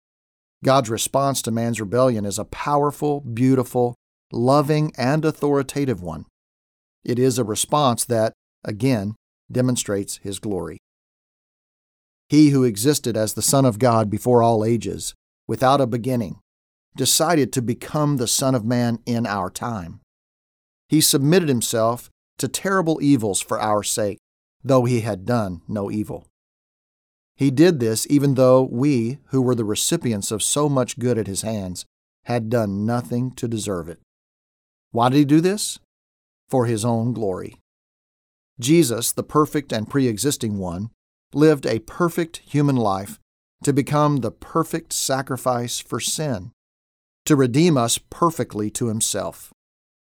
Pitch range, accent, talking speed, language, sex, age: 105-140 Hz, American, 140 wpm, English, male, 50-69